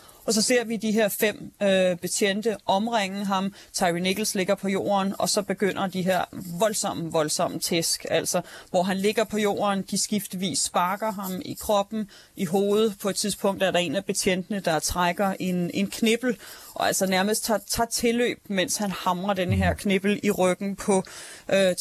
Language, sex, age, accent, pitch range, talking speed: Danish, female, 30-49, native, 180-210 Hz, 185 wpm